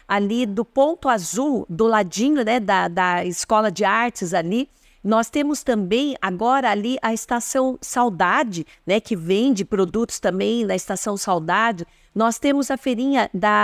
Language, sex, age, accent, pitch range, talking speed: Portuguese, female, 50-69, Brazilian, 210-265 Hz, 150 wpm